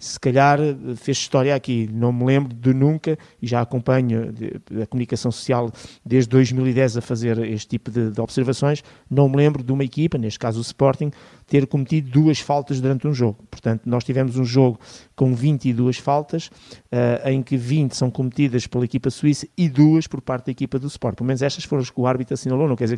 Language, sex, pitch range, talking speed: Portuguese, male, 125-145 Hz, 205 wpm